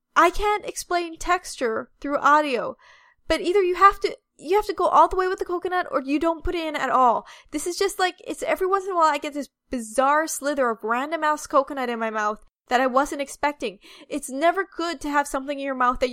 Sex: female